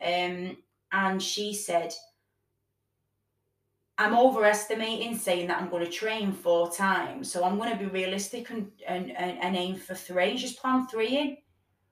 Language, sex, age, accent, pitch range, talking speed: English, female, 20-39, British, 170-215 Hz, 155 wpm